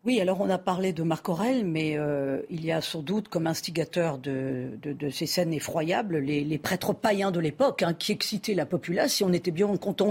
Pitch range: 175-245 Hz